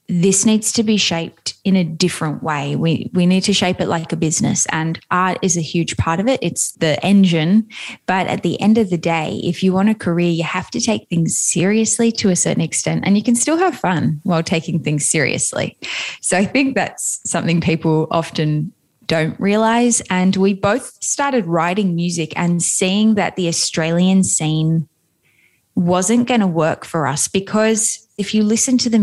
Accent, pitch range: Australian, 160-195 Hz